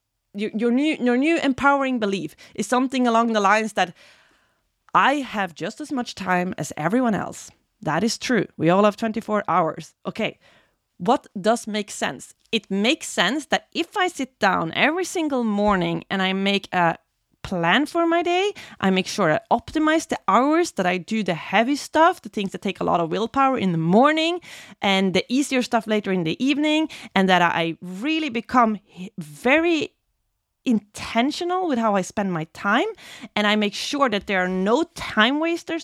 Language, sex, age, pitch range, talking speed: English, female, 20-39, 195-280 Hz, 180 wpm